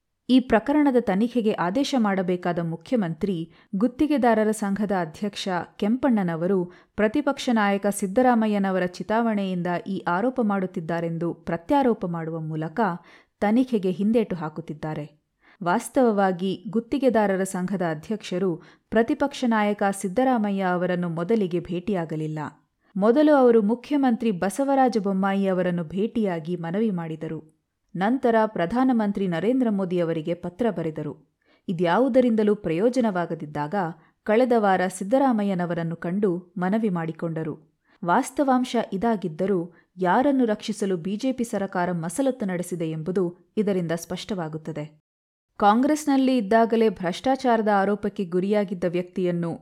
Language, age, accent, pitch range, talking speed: Kannada, 30-49, native, 175-230 Hz, 90 wpm